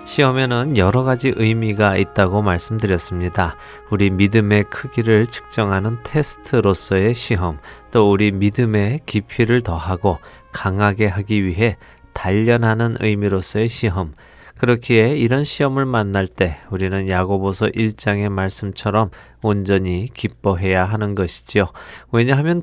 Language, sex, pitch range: Korean, male, 95-115 Hz